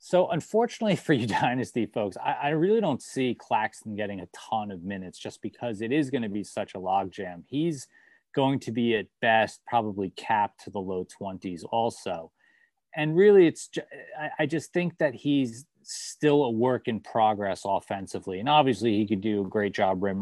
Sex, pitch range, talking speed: male, 100-130 Hz, 185 wpm